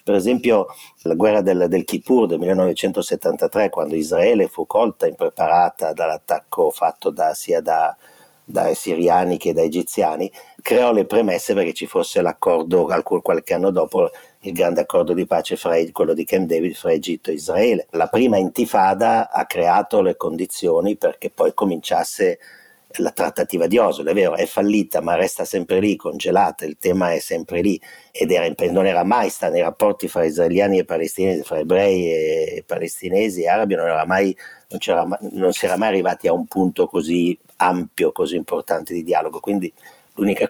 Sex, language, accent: male, Italian, native